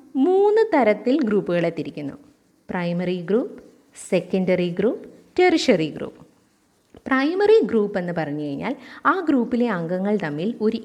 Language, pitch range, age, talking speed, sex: Malayalam, 180-255 Hz, 20-39, 105 wpm, female